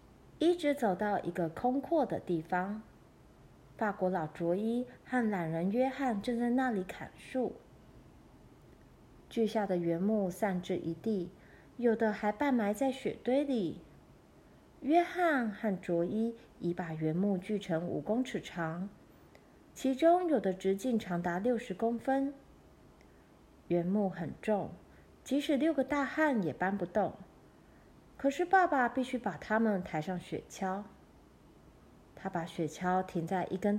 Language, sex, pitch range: Chinese, female, 180-245 Hz